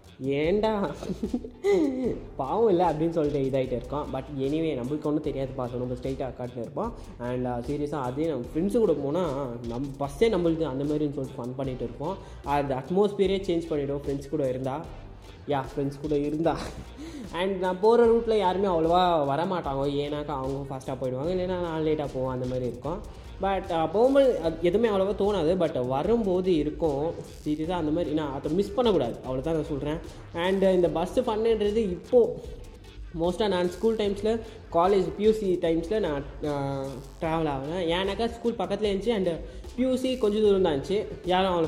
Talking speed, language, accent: 155 wpm, Tamil, native